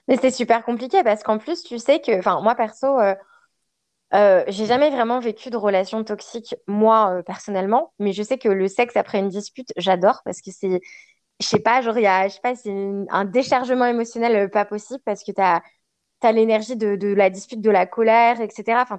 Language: French